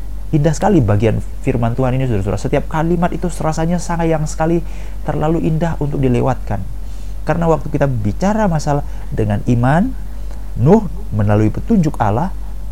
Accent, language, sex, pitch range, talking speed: native, Indonesian, male, 110-160 Hz, 135 wpm